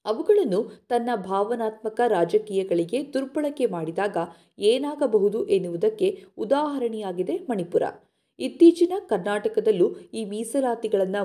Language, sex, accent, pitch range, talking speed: Kannada, female, native, 195-310 Hz, 75 wpm